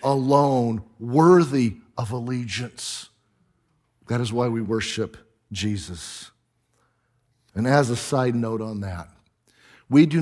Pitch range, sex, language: 110-135 Hz, male, English